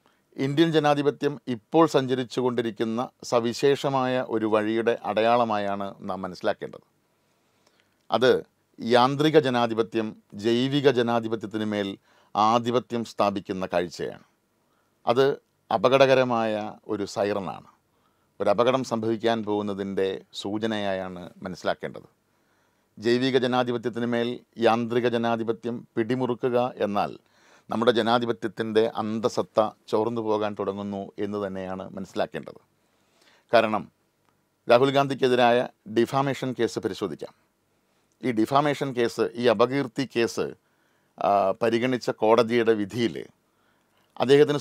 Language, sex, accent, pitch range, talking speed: Malayalam, male, native, 110-130 Hz, 80 wpm